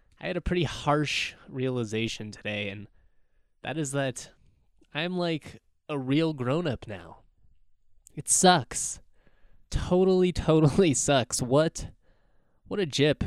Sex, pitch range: male, 110-150 Hz